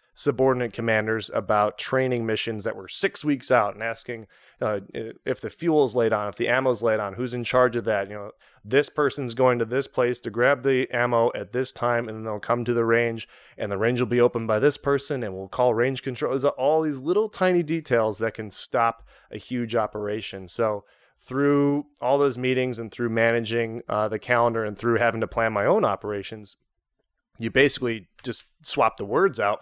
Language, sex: English, male